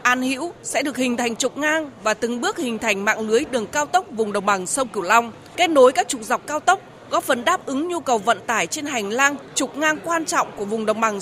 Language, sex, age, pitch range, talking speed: Vietnamese, female, 20-39, 225-315 Hz, 265 wpm